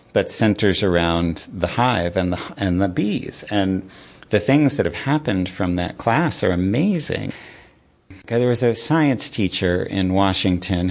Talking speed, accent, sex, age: 160 wpm, American, male, 40-59